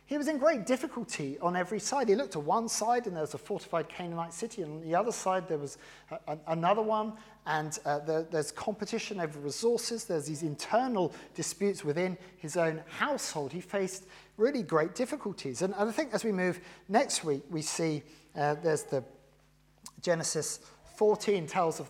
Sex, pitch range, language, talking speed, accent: male, 155-210 Hz, English, 190 wpm, British